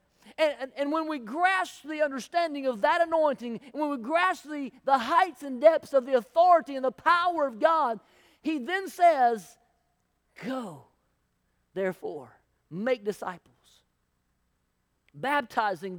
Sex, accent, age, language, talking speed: male, American, 40-59, English, 130 wpm